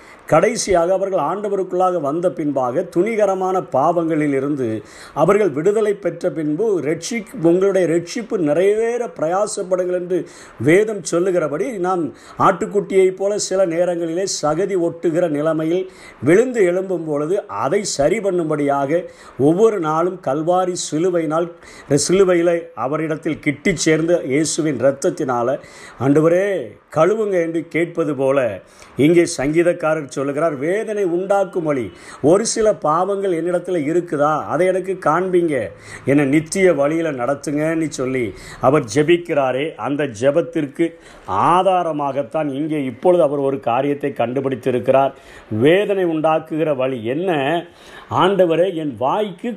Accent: native